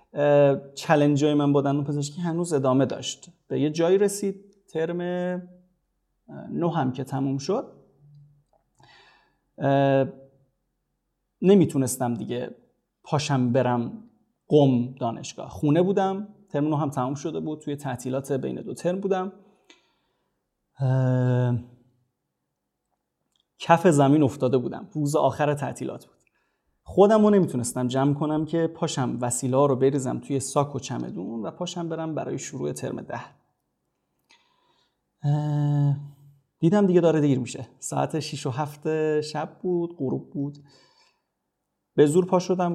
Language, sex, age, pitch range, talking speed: Persian, male, 30-49, 135-180 Hz, 120 wpm